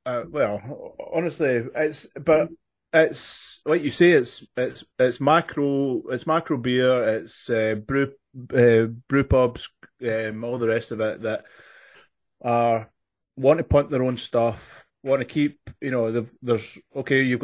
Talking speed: 160 wpm